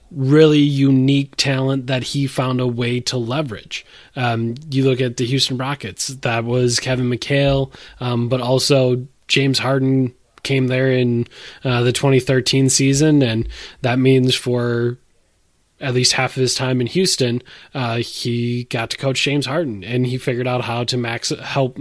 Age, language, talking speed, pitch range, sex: 20-39, English, 160 wpm, 120-140 Hz, male